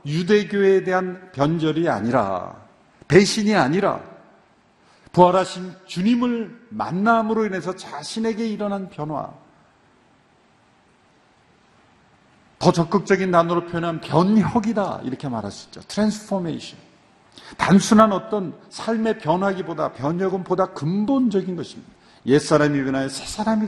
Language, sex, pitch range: Korean, male, 135-210 Hz